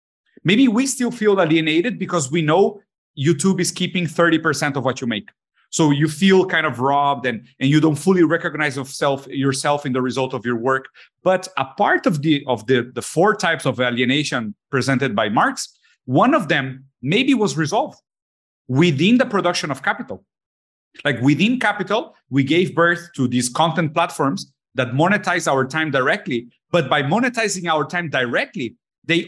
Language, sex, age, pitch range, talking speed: English, male, 30-49, 135-185 Hz, 170 wpm